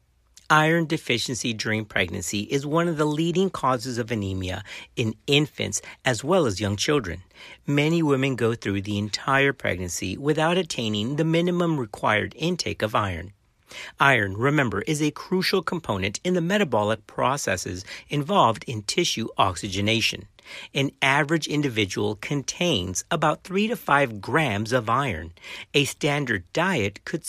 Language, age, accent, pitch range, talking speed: English, 50-69, American, 105-160 Hz, 140 wpm